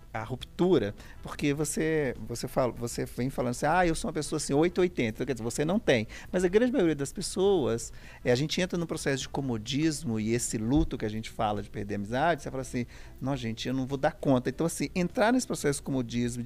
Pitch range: 120-165 Hz